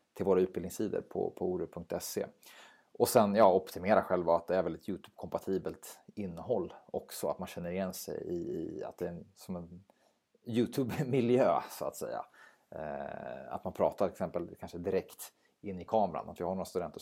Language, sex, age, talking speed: Swedish, male, 30-49, 180 wpm